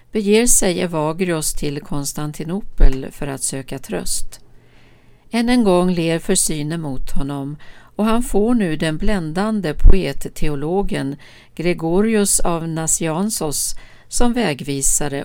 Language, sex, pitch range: Swedish, female, 140-195 Hz